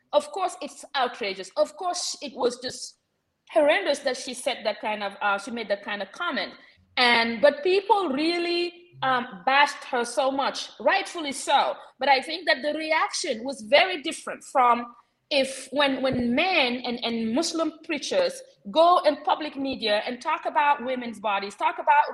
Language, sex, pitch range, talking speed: English, female, 245-330 Hz, 170 wpm